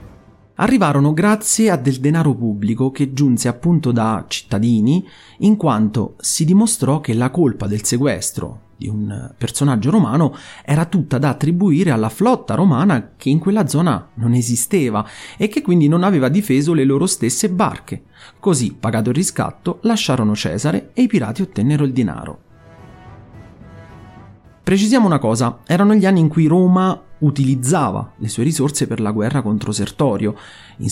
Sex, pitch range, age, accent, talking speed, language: male, 115-180 Hz, 30-49, native, 150 wpm, Italian